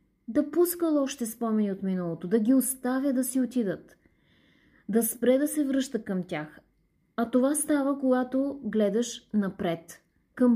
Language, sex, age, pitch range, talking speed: Bulgarian, female, 30-49, 200-260 Hz, 150 wpm